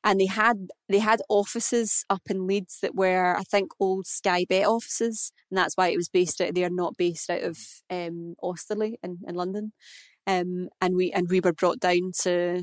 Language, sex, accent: English, female, British